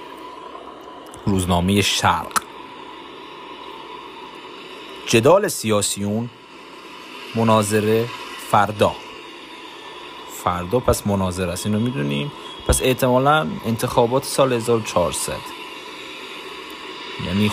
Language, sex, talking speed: Persian, male, 65 wpm